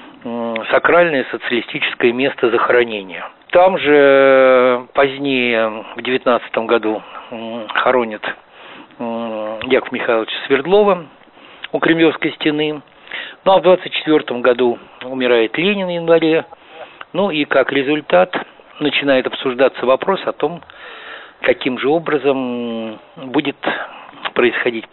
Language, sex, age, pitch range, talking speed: Russian, male, 50-69, 115-160 Hz, 95 wpm